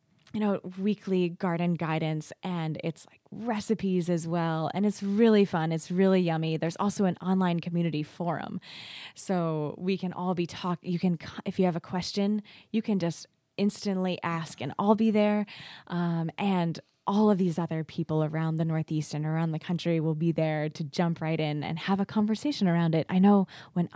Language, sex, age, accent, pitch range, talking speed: English, female, 20-39, American, 160-195 Hz, 190 wpm